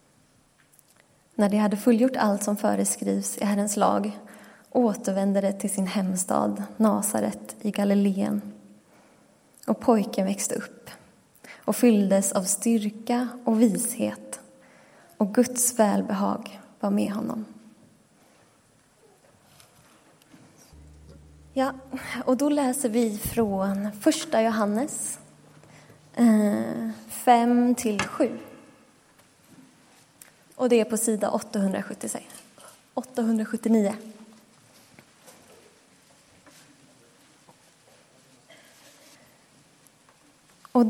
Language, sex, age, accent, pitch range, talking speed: Swedish, female, 20-39, native, 200-245 Hz, 75 wpm